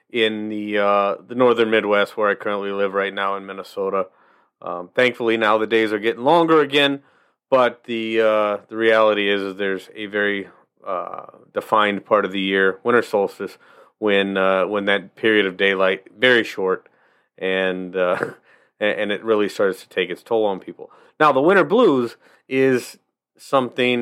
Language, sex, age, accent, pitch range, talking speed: English, male, 30-49, American, 100-130 Hz, 170 wpm